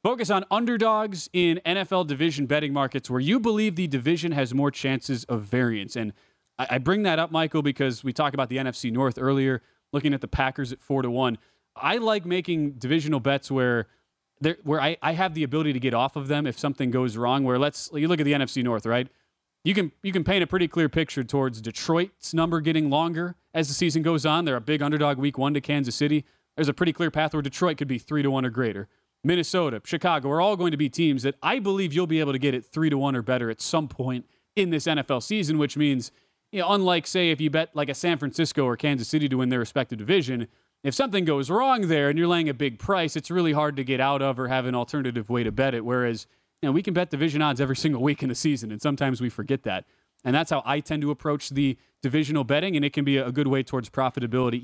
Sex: male